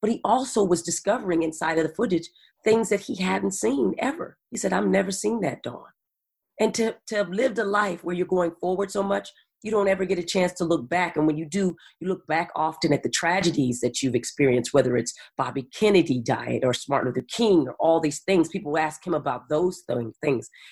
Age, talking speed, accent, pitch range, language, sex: 40-59, 225 wpm, American, 145-185 Hz, English, female